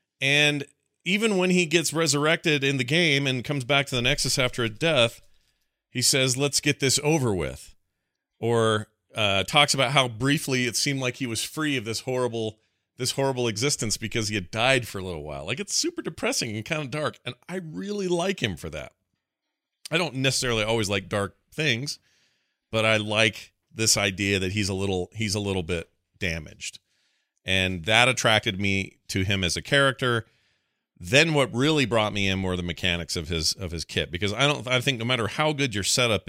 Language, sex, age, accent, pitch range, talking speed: English, male, 40-59, American, 90-130 Hz, 200 wpm